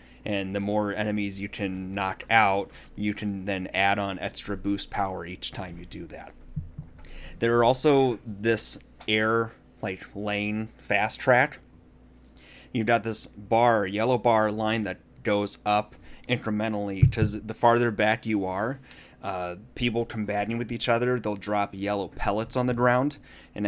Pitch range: 100-115 Hz